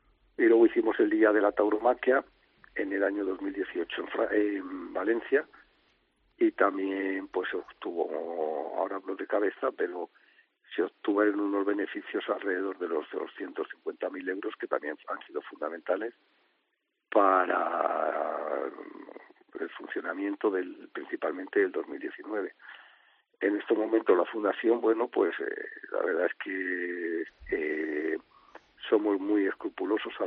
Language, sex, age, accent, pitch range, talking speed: Spanish, male, 50-69, Spanish, 310-420 Hz, 130 wpm